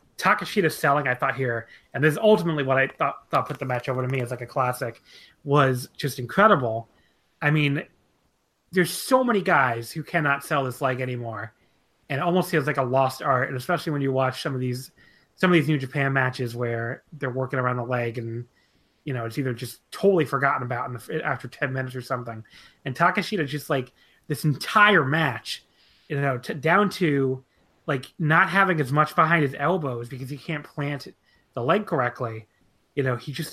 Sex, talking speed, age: male, 200 wpm, 30-49